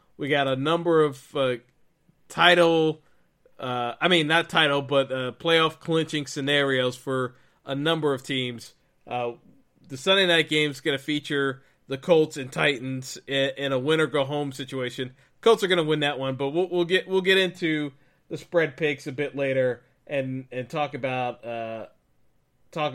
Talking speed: 175 wpm